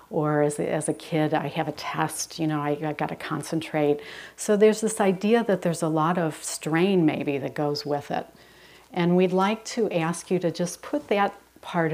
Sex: female